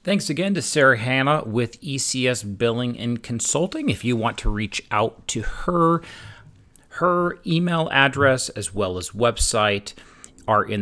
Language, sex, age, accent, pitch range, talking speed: English, male, 40-59, American, 100-140 Hz, 150 wpm